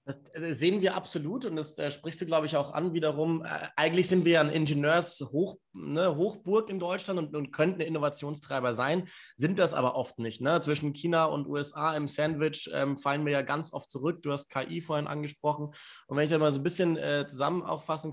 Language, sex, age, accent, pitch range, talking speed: German, male, 30-49, German, 140-160 Hz, 205 wpm